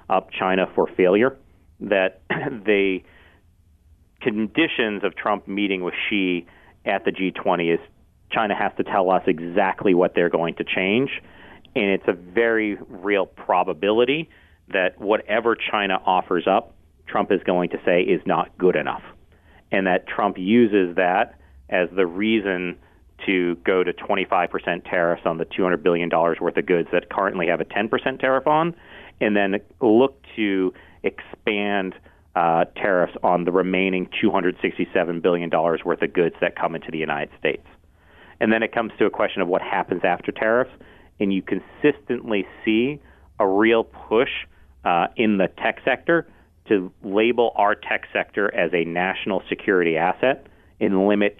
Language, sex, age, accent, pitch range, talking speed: English, male, 40-59, American, 90-110 Hz, 155 wpm